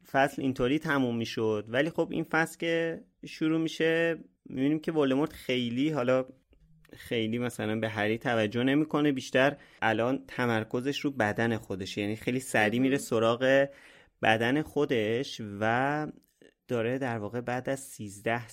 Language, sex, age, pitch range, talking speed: Persian, male, 30-49, 105-130 Hz, 145 wpm